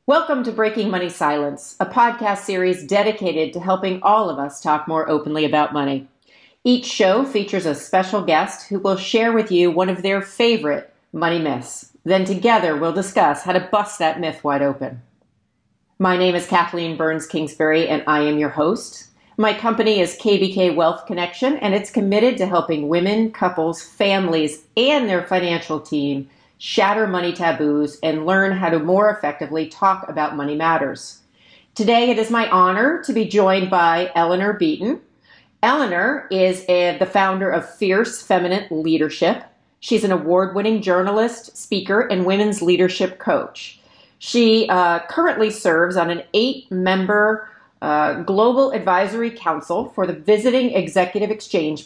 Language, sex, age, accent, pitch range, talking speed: English, female, 40-59, American, 160-210 Hz, 155 wpm